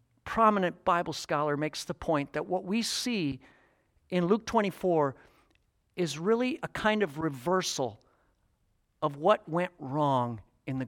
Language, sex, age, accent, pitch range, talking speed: English, male, 50-69, American, 150-200 Hz, 140 wpm